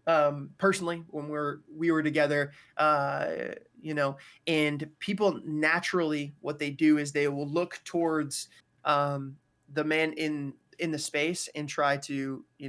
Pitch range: 140-165 Hz